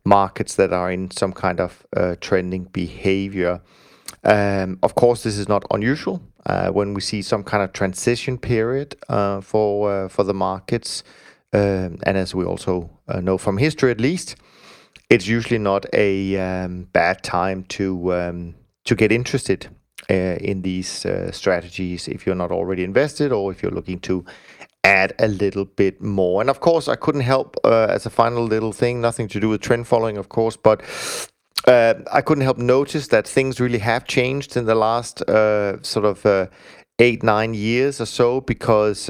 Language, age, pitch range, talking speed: English, 30-49, 95-125 Hz, 185 wpm